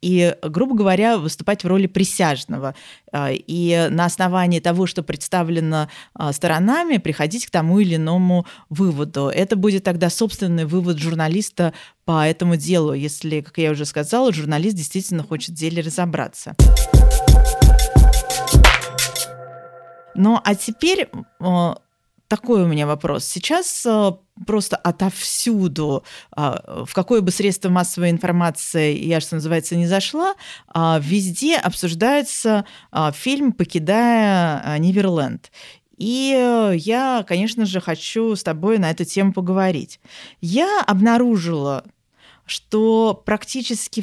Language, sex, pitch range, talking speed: Russian, female, 170-225 Hz, 110 wpm